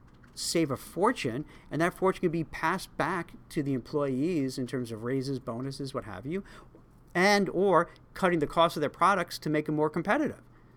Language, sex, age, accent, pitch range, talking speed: English, male, 50-69, American, 130-180 Hz, 190 wpm